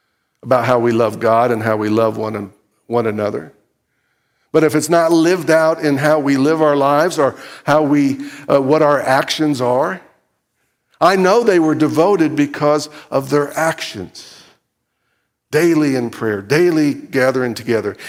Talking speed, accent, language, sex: 160 wpm, American, English, male